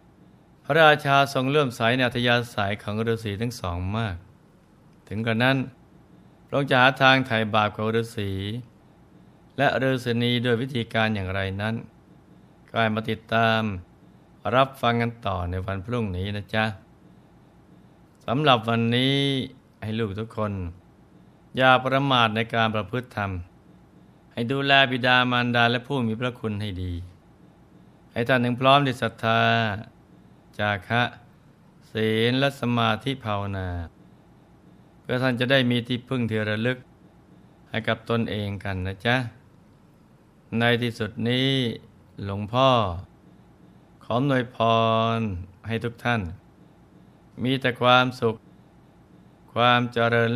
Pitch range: 105-125 Hz